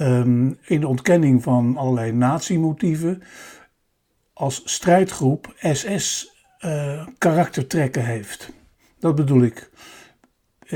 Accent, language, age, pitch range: Dutch, Dutch, 60-79, 130-165 Hz